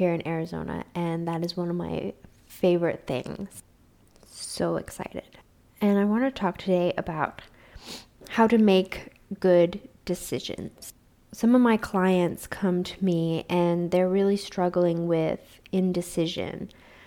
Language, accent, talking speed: English, American, 130 wpm